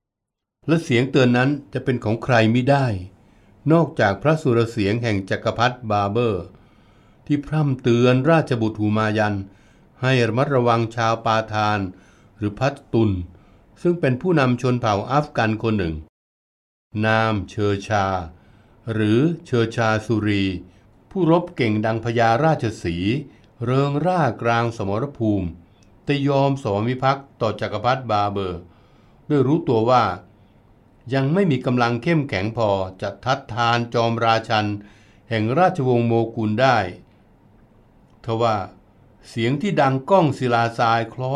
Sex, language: male, Thai